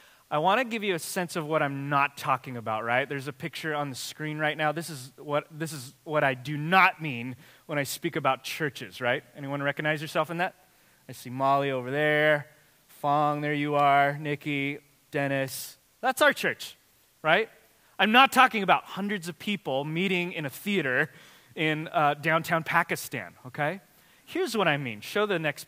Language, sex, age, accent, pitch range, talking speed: English, male, 20-39, American, 140-170 Hz, 190 wpm